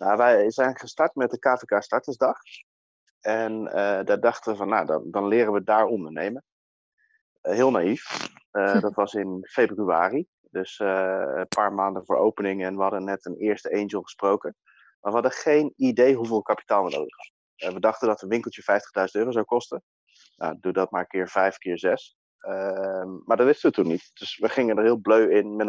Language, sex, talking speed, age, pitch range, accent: Dutch, male, 205 wpm, 30-49, 95-115 Hz, Dutch